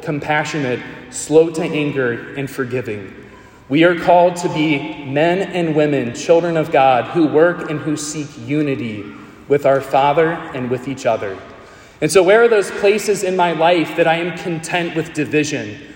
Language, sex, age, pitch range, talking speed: English, male, 30-49, 140-175 Hz, 170 wpm